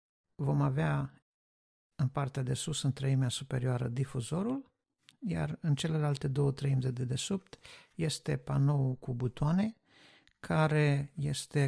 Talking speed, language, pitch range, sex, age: 120 wpm, Romanian, 130-155 Hz, male, 50-69